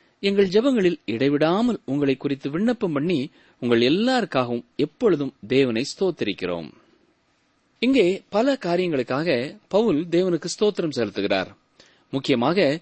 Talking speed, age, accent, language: 95 wpm, 30-49, native, Tamil